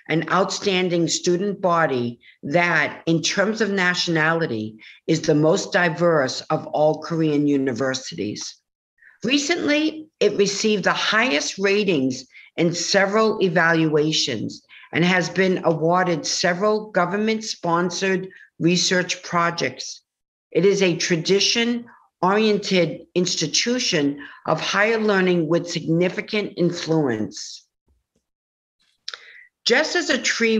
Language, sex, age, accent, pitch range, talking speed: English, female, 50-69, American, 160-200 Hz, 100 wpm